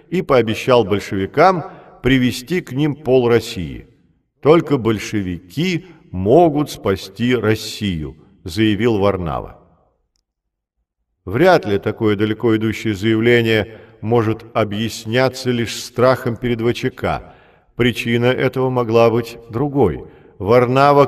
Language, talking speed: Russian, 95 wpm